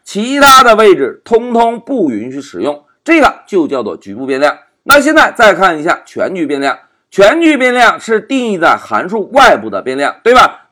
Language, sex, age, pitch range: Chinese, male, 50-69, 215-315 Hz